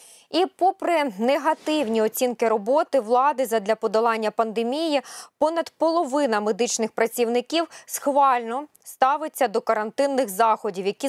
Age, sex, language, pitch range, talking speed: 20-39, female, Ukrainian, 225-290 Hz, 105 wpm